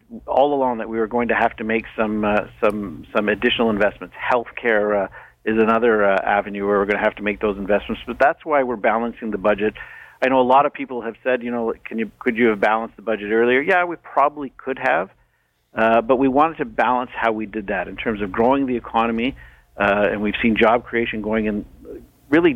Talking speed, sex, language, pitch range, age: 230 wpm, male, English, 105-130 Hz, 50-69